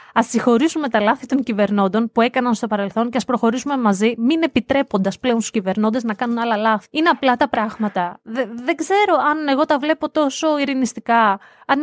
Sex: female